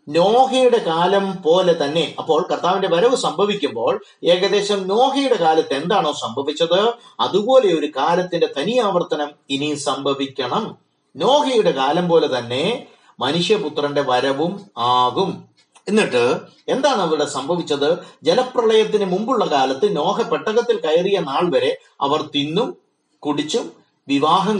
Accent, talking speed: native, 100 wpm